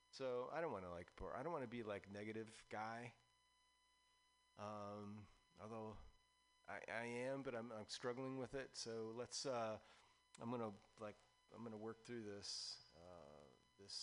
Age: 30-49